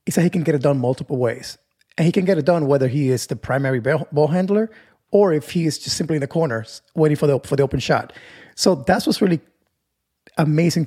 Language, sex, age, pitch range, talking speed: English, male, 20-39, 130-165 Hz, 230 wpm